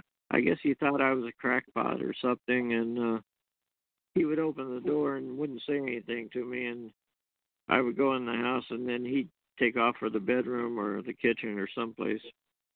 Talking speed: 200 wpm